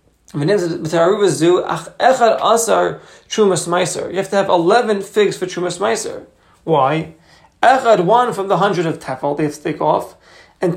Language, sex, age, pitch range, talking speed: English, male, 30-49, 175-225 Hz, 130 wpm